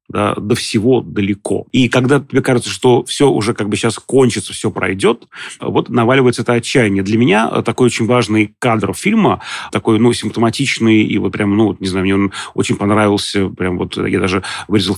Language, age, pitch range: Russian, 30-49, 100-120 Hz